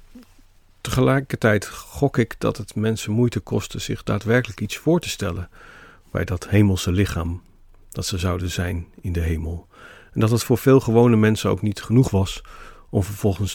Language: Dutch